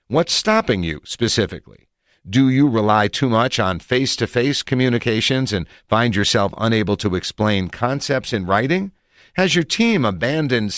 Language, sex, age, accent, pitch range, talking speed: English, male, 50-69, American, 95-135 Hz, 140 wpm